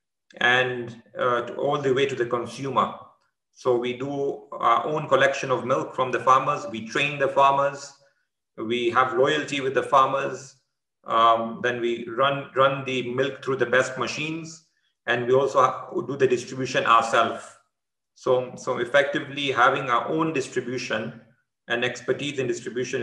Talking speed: 155 wpm